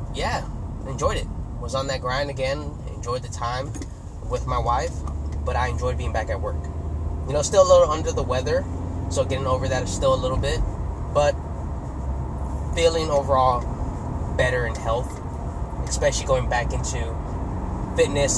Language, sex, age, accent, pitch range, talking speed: English, male, 20-39, American, 75-125 Hz, 160 wpm